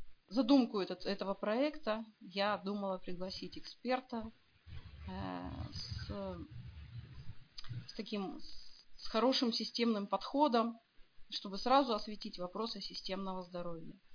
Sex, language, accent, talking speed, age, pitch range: female, Russian, native, 100 wpm, 30-49, 185-230 Hz